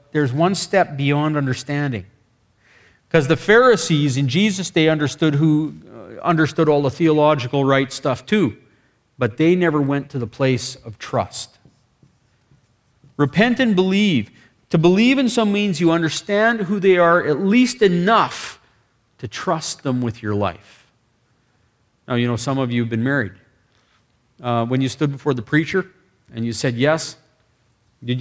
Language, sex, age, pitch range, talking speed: English, male, 40-59, 115-170 Hz, 155 wpm